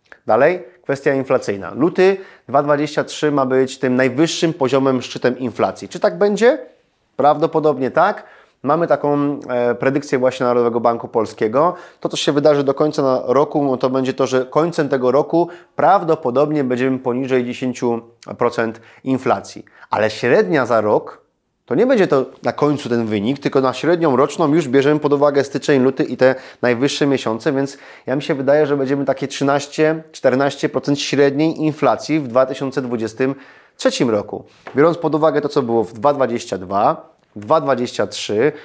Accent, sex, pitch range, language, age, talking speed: native, male, 125-150 Hz, Polish, 20-39, 145 wpm